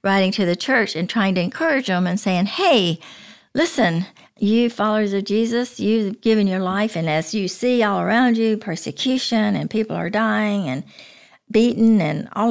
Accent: American